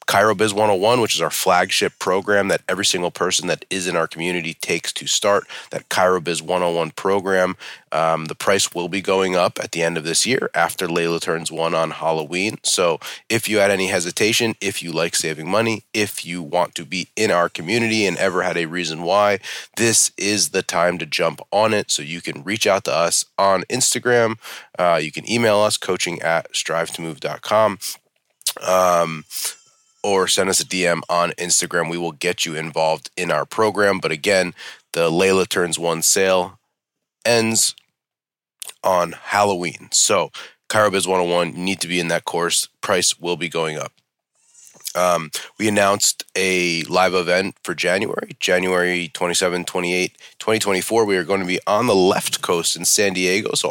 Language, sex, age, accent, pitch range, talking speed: English, male, 30-49, American, 85-105 Hz, 180 wpm